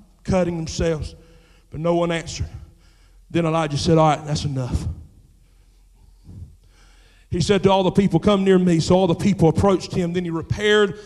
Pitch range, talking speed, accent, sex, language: 165-220 Hz, 170 wpm, American, male, English